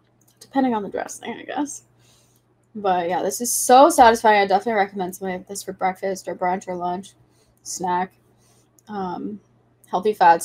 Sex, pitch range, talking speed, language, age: female, 185-225 Hz, 160 wpm, English, 10-29